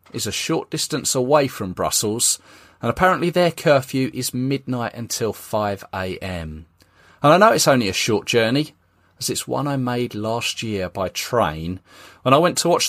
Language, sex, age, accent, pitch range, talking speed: English, male, 30-49, British, 95-155 Hz, 170 wpm